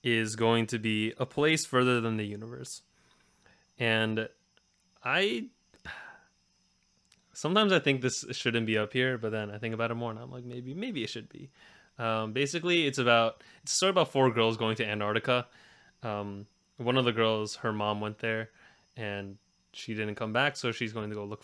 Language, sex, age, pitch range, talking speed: English, male, 20-39, 110-130 Hz, 190 wpm